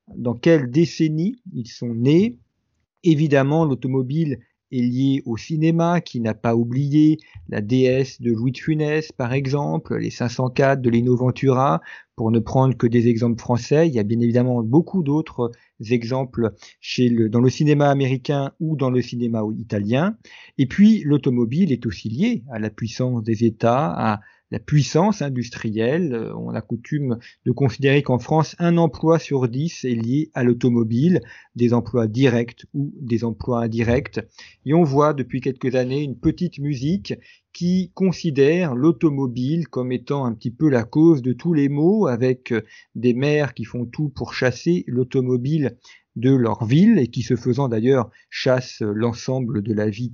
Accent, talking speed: French, 165 wpm